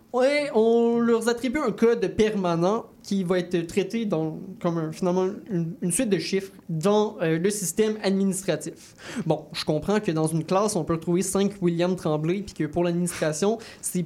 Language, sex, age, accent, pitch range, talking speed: French, male, 20-39, Canadian, 170-220 Hz, 185 wpm